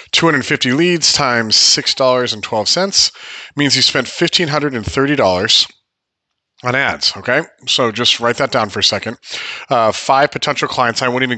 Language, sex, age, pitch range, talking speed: English, male, 40-59, 110-145 Hz, 135 wpm